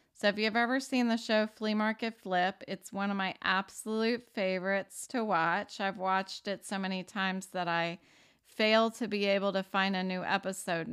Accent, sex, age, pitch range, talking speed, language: American, female, 30-49, 185-220 Hz, 190 wpm, English